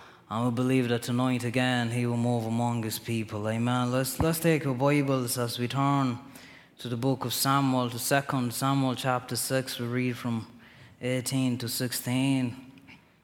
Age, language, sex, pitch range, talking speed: 20-39, English, male, 120-135 Hz, 170 wpm